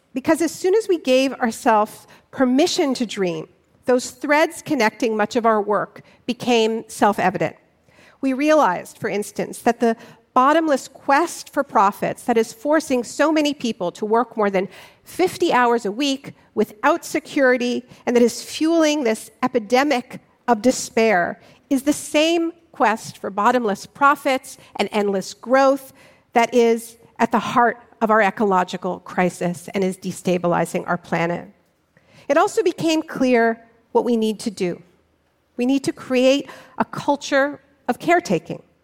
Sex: female